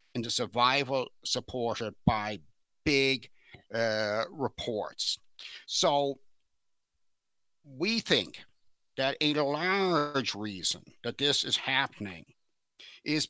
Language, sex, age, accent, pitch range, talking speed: English, male, 60-79, American, 125-155 Hz, 90 wpm